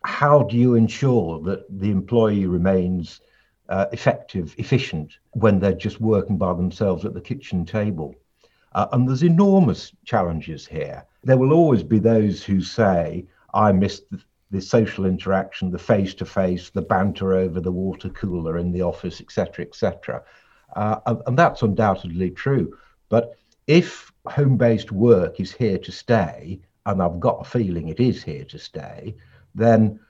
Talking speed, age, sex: 160 wpm, 60-79, male